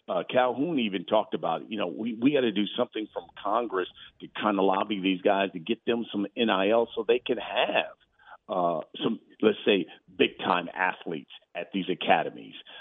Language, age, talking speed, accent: English, 50-69, 185 wpm, American